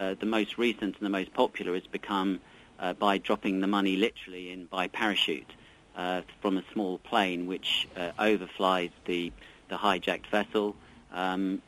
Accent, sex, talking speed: British, male, 165 wpm